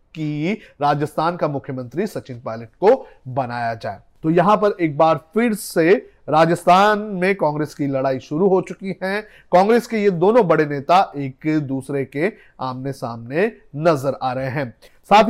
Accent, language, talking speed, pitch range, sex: native, Hindi, 155 wpm, 140-195 Hz, male